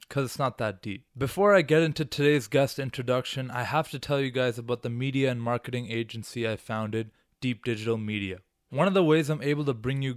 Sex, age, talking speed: male, 20-39, 225 wpm